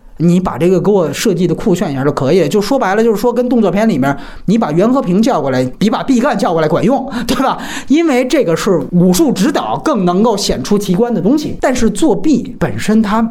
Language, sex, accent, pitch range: Chinese, male, native, 165-235 Hz